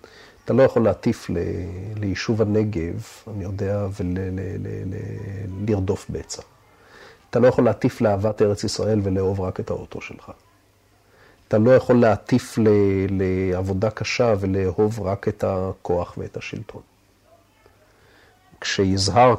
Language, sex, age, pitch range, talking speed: Hebrew, male, 40-59, 100-130 Hz, 120 wpm